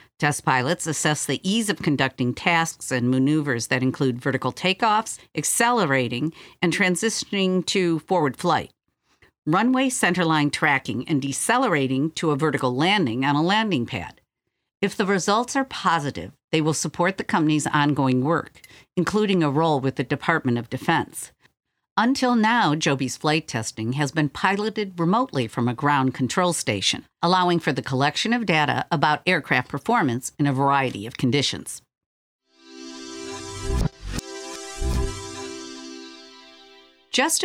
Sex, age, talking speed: female, 50-69, 130 wpm